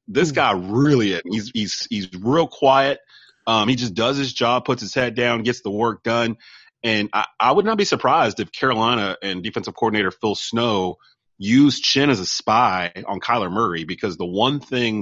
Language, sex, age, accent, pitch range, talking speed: English, male, 30-49, American, 95-120 Hz, 190 wpm